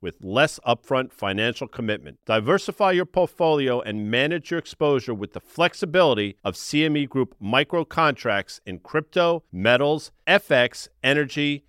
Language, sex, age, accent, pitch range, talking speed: English, male, 50-69, American, 120-180 Hz, 130 wpm